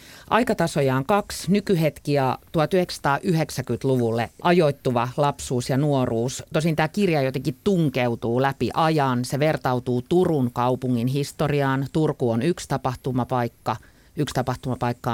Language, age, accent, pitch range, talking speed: Finnish, 30-49, native, 120-150 Hz, 105 wpm